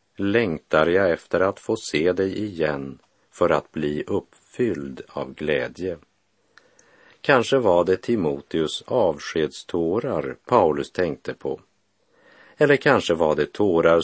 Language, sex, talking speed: Swedish, male, 115 wpm